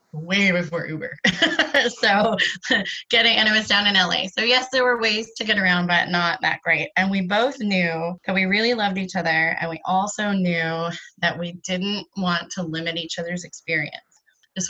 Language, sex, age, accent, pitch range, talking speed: English, female, 20-39, American, 170-200 Hz, 190 wpm